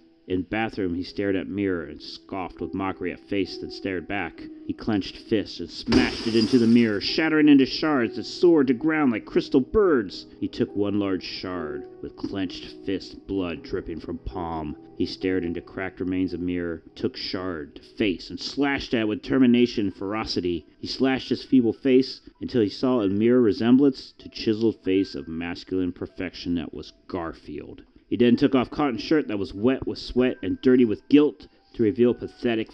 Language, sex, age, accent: English, male, 40-59, American